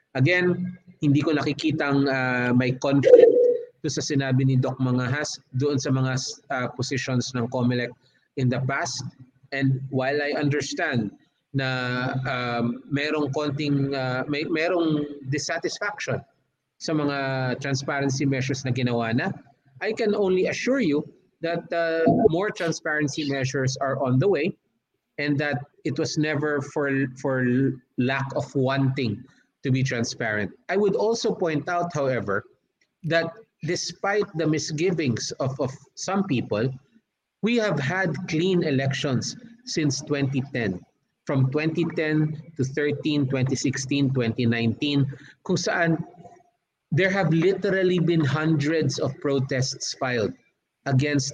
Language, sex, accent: Filipino, male, native